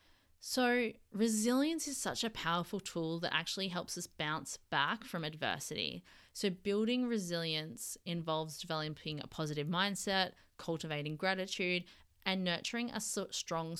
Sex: female